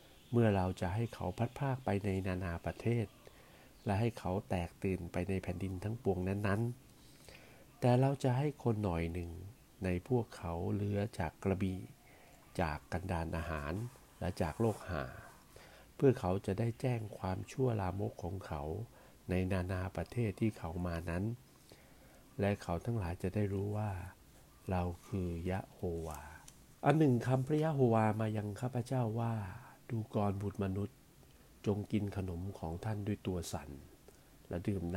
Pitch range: 90-110 Hz